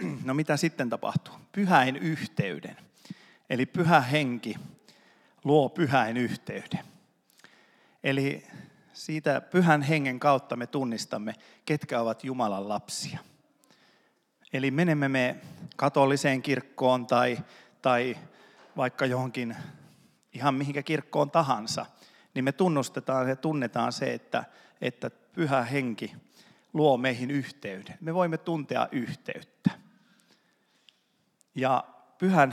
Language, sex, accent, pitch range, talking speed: Finnish, male, native, 120-145 Hz, 100 wpm